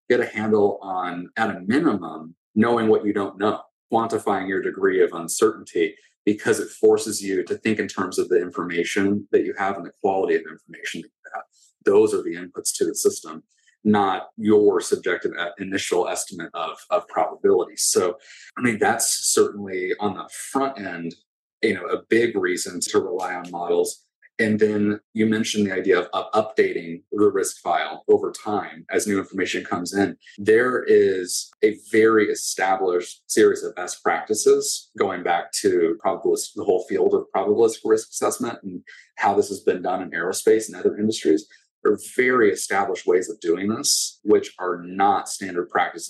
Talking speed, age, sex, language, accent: 175 wpm, 30-49, male, English, American